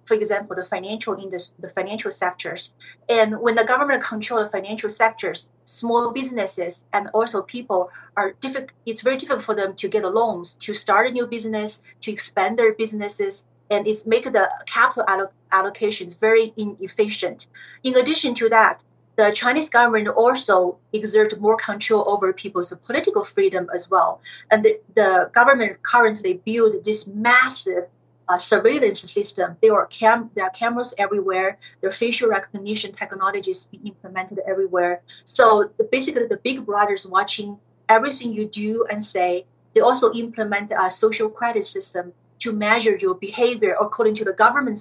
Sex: female